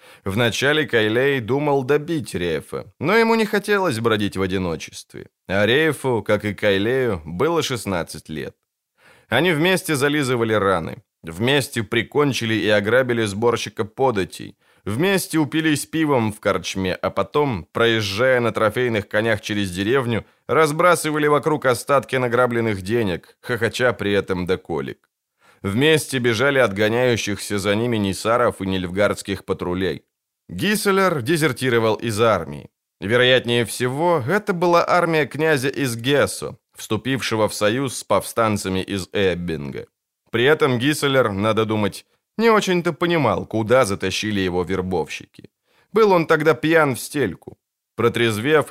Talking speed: 120 wpm